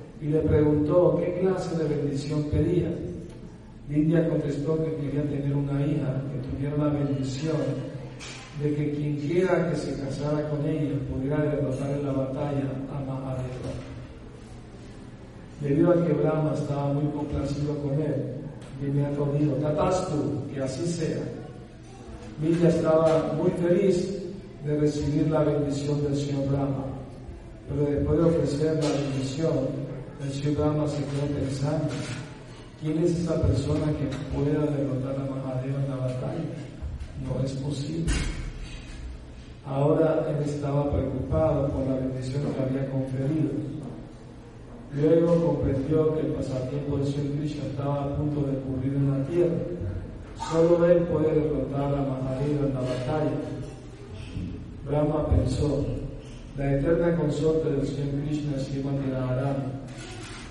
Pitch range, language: 135-150 Hz, Spanish